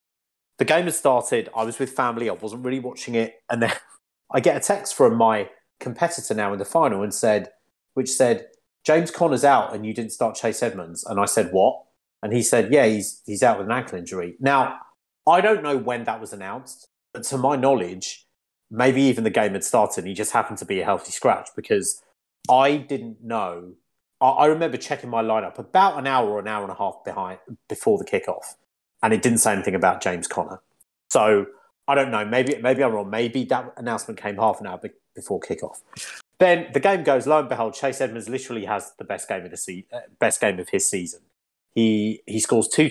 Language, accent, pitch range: English, British, 110-145 Hz